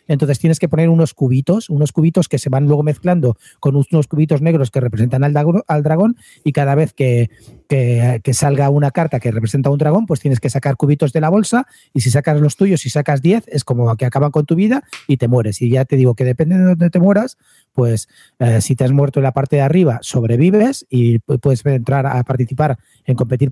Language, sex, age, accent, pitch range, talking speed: Spanish, male, 40-59, Spanish, 135-170 Hz, 235 wpm